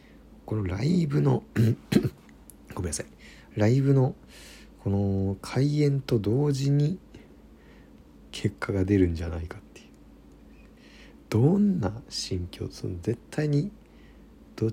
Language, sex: Japanese, male